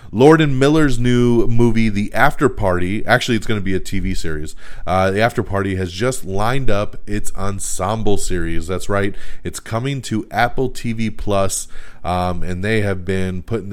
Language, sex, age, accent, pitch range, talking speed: English, male, 30-49, American, 90-115 Hz, 180 wpm